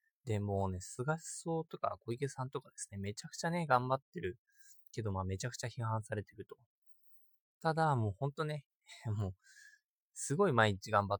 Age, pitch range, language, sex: 20-39, 105-175 Hz, Japanese, male